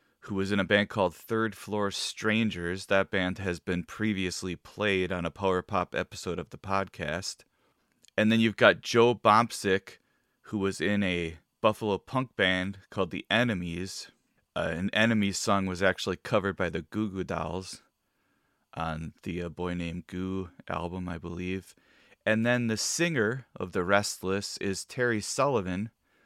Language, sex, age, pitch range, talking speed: English, male, 30-49, 90-105 Hz, 160 wpm